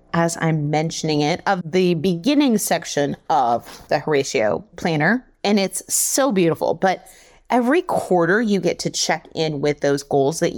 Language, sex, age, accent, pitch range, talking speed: English, female, 30-49, American, 155-205 Hz, 160 wpm